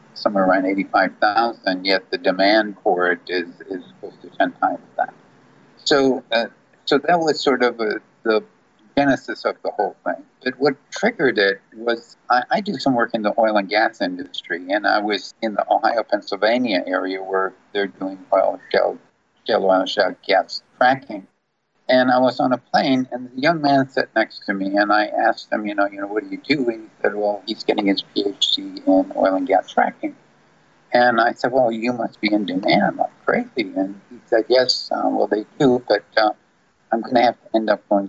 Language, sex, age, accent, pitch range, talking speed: English, male, 50-69, American, 100-130 Hz, 205 wpm